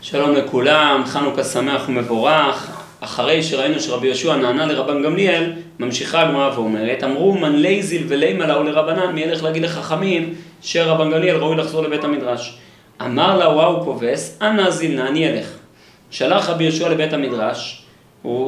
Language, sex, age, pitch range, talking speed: Hebrew, male, 30-49, 145-185 Hz, 140 wpm